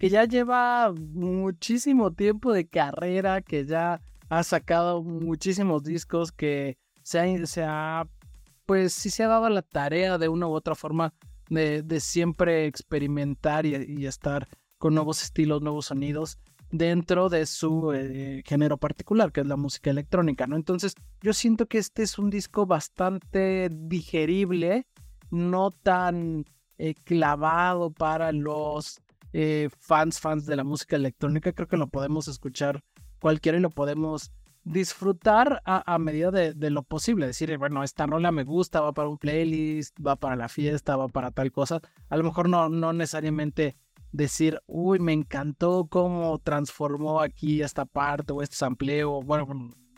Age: 30-49